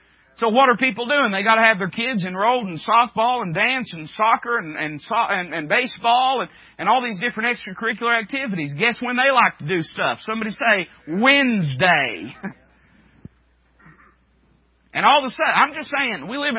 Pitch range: 175-265 Hz